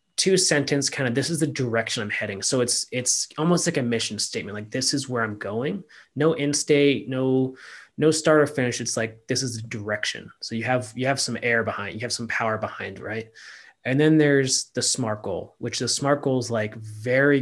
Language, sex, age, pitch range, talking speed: English, male, 20-39, 115-145 Hz, 225 wpm